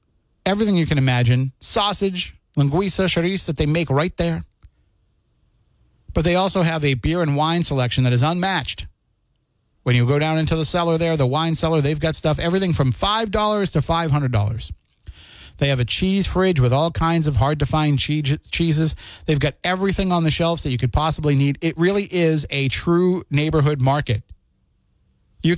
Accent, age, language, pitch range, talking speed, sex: American, 30-49, English, 125-165 Hz, 170 wpm, male